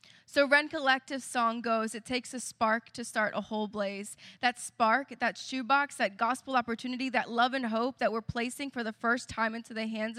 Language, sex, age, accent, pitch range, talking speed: English, female, 10-29, American, 215-260 Hz, 205 wpm